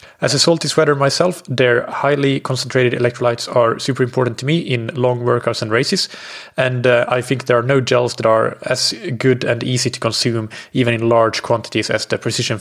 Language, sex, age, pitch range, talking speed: English, male, 20-39, 120-140 Hz, 200 wpm